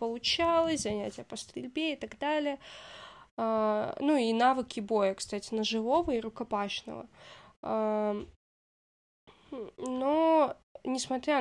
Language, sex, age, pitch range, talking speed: Russian, female, 20-39, 215-285 Hz, 90 wpm